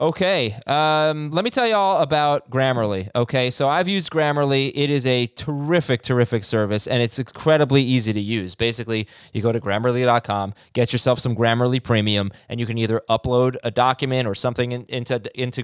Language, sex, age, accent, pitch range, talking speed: English, male, 20-39, American, 115-155 Hz, 185 wpm